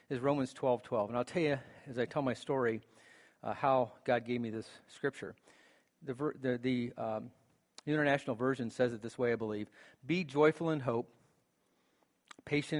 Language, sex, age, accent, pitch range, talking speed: English, male, 40-59, American, 115-135 Hz, 180 wpm